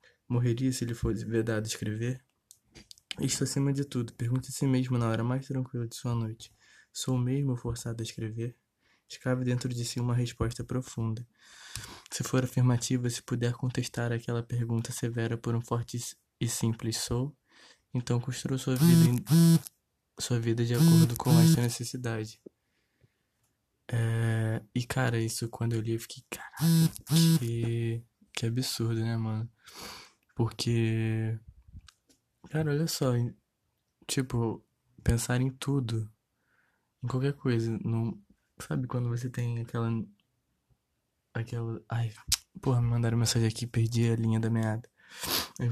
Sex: male